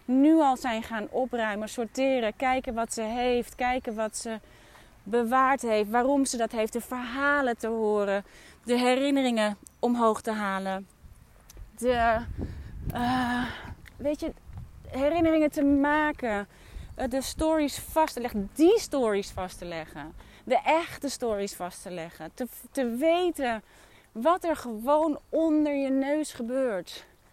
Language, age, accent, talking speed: Dutch, 30-49, Dutch, 130 wpm